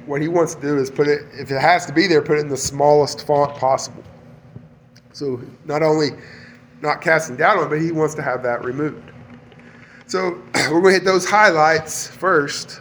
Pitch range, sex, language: 130-160 Hz, male, English